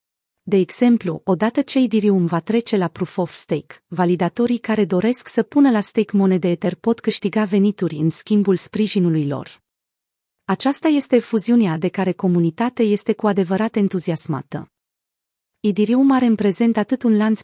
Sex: female